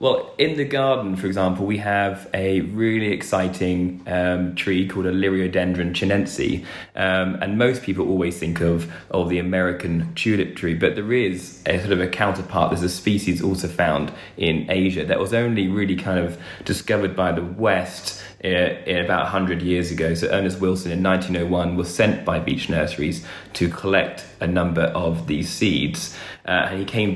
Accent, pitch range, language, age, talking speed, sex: British, 90-95 Hz, English, 20-39, 180 wpm, male